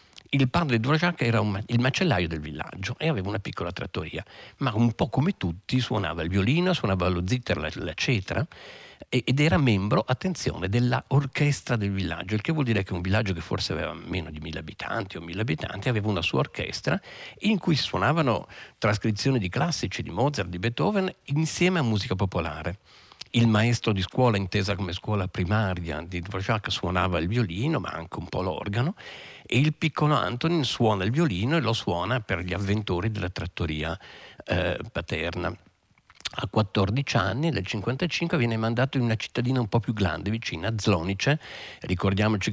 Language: Italian